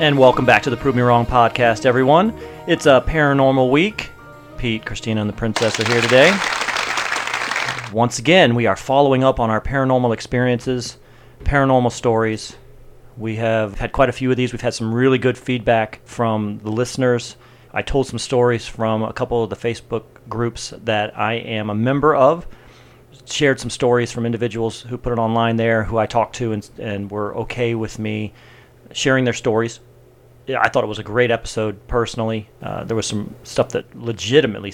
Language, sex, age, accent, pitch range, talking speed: English, male, 40-59, American, 110-125 Hz, 185 wpm